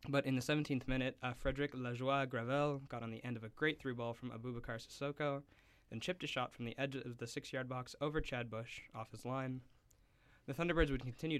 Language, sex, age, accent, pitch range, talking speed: English, male, 20-39, American, 115-130 Hz, 220 wpm